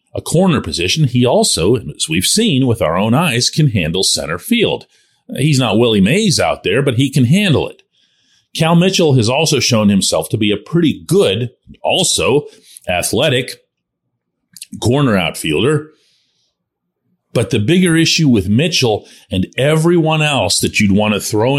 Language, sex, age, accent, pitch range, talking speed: English, male, 40-59, American, 120-180 Hz, 155 wpm